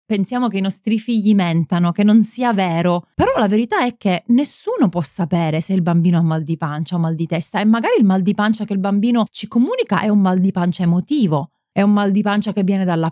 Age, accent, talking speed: 30-49, native, 245 wpm